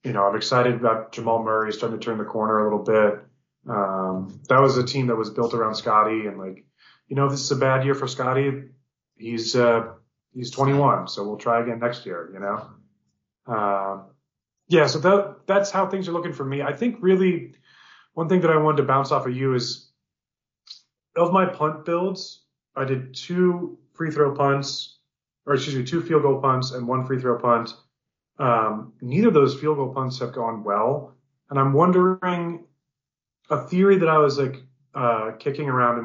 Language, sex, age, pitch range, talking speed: English, male, 30-49, 115-145 Hz, 200 wpm